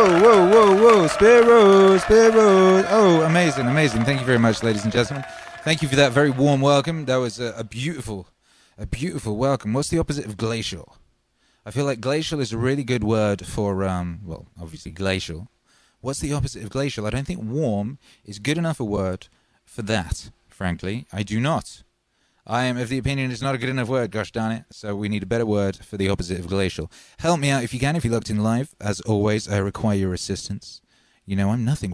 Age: 20-39